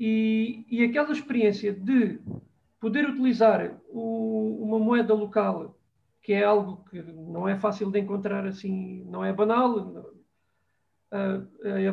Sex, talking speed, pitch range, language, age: male, 120 wpm, 210-255 Hz, Portuguese, 40-59